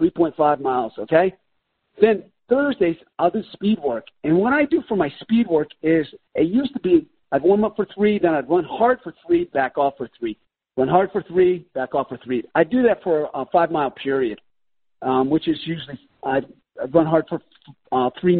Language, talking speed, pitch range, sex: English, 205 wpm, 135-185 Hz, male